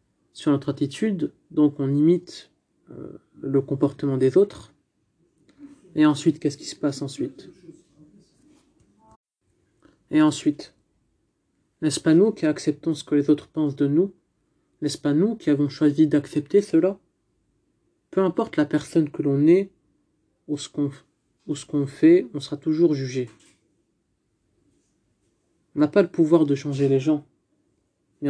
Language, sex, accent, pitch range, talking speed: French, male, French, 145-165 Hz, 145 wpm